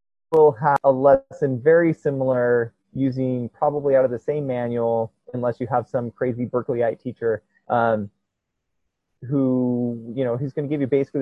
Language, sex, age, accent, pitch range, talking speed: English, male, 30-49, American, 120-145 Hz, 160 wpm